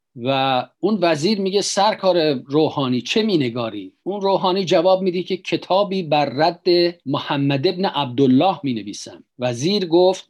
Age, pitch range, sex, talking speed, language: 50-69, 140-185 Hz, male, 130 wpm, Persian